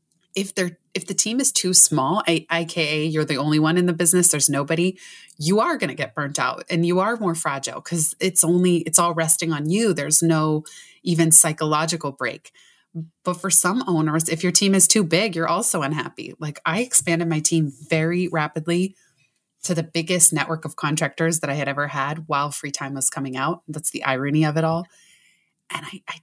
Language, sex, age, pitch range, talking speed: English, female, 20-39, 155-180 Hz, 205 wpm